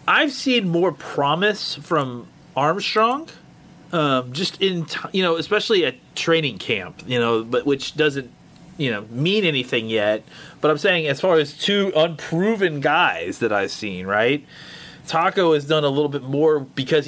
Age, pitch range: 30-49, 125-160 Hz